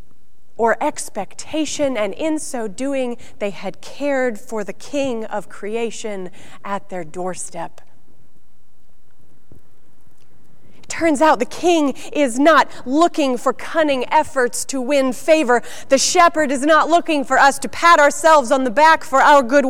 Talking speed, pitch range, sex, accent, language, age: 145 wpm, 205-280 Hz, female, American, English, 30-49